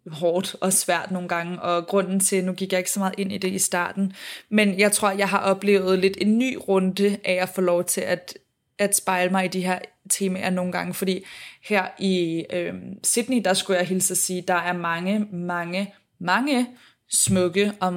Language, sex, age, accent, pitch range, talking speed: Danish, female, 20-39, native, 175-195 Hz, 205 wpm